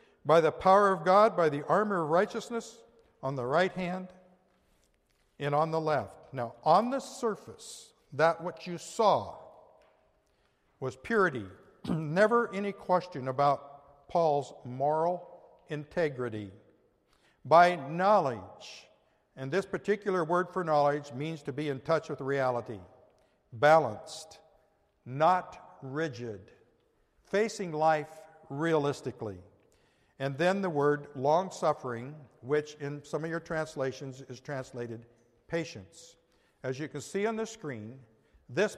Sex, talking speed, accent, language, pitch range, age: male, 120 wpm, American, English, 140-190 Hz, 60-79